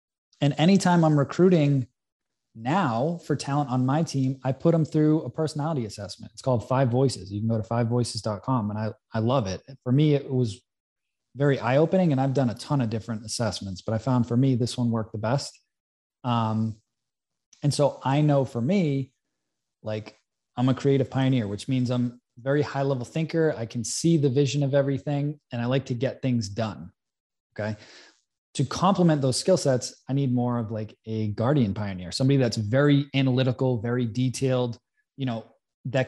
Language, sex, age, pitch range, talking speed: English, male, 20-39, 115-140 Hz, 190 wpm